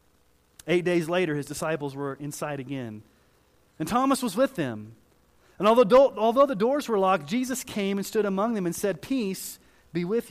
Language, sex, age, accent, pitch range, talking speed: English, male, 30-49, American, 125-205 Hz, 180 wpm